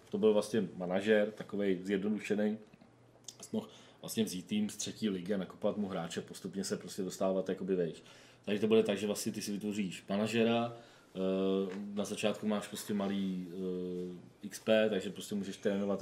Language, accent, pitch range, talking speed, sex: Czech, native, 95-105 Hz, 155 wpm, male